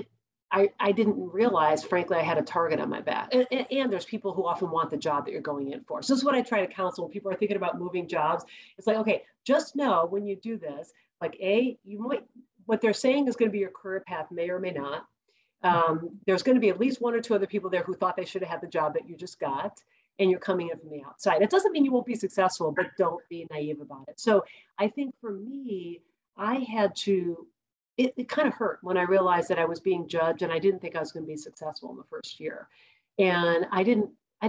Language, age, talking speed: English, 40-59, 260 wpm